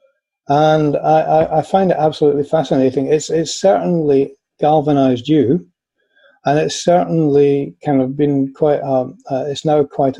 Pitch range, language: 135-175 Hz, English